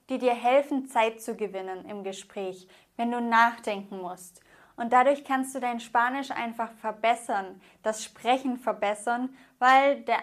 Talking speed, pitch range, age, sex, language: 145 wpm, 220-265 Hz, 20-39, female, English